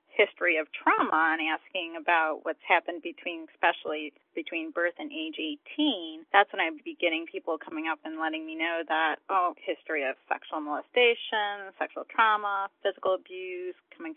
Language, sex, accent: English, female, American